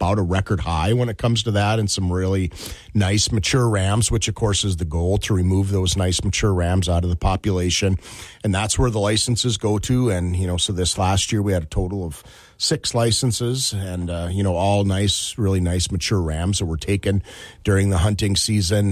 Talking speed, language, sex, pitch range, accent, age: 220 wpm, English, male, 95-110 Hz, American, 40-59